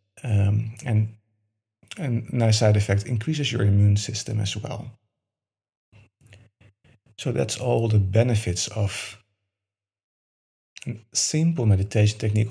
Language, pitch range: English, 105-125 Hz